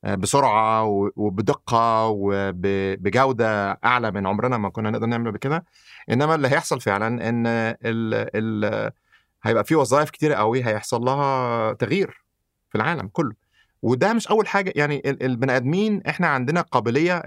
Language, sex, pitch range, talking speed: Arabic, male, 110-150 Hz, 135 wpm